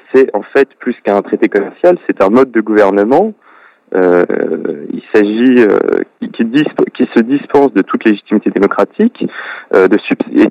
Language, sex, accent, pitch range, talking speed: French, male, French, 100-140 Hz, 170 wpm